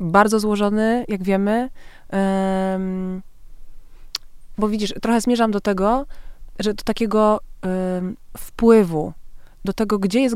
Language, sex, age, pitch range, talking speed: Polish, female, 20-39, 175-200 Hz, 115 wpm